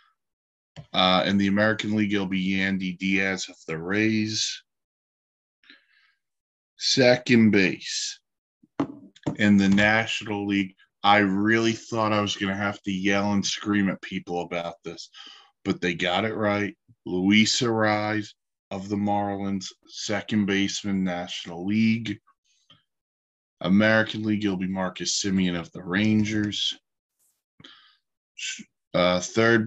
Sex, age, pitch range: male, 20-39, 95-110 Hz